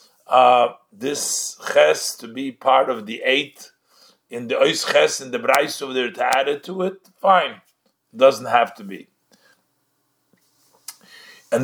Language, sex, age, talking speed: English, male, 50-69, 145 wpm